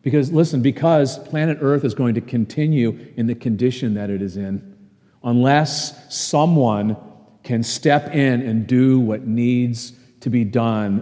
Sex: male